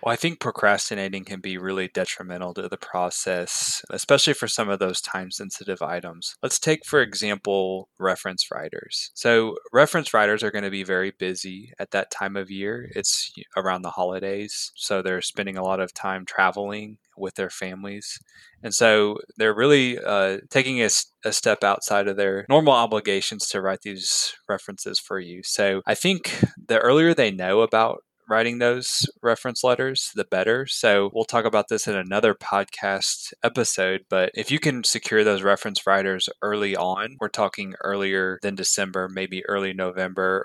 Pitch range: 95-110 Hz